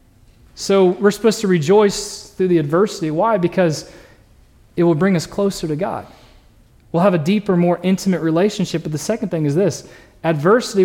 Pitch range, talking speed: 155-210 Hz, 170 wpm